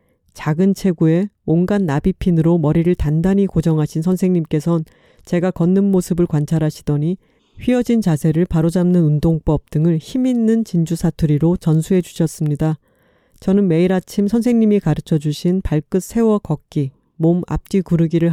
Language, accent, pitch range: Korean, native, 160-195 Hz